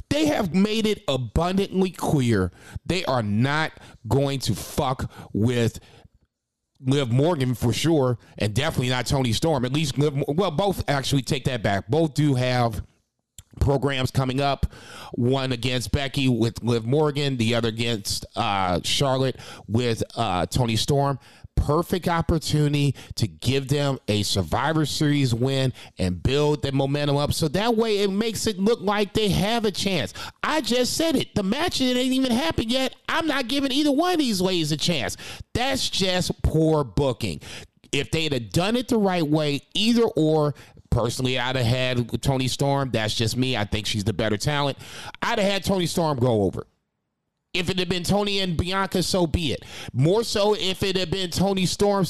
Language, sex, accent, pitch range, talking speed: English, male, American, 125-185 Hz, 175 wpm